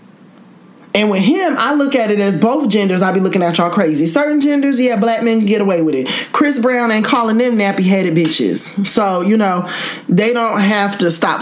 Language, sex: English, male